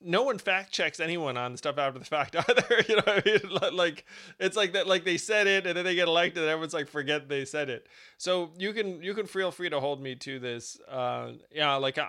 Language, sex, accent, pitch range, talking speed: English, male, American, 125-165 Hz, 255 wpm